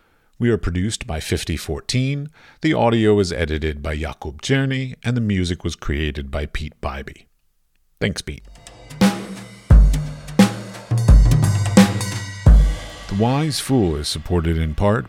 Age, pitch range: 50-69, 80-105 Hz